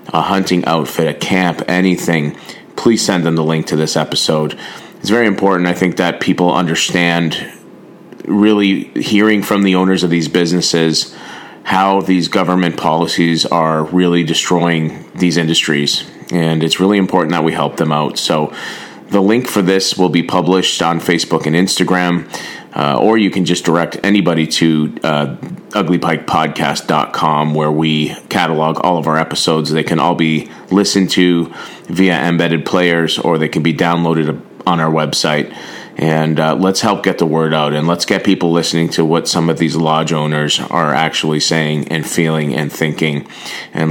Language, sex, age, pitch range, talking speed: English, male, 30-49, 80-90 Hz, 170 wpm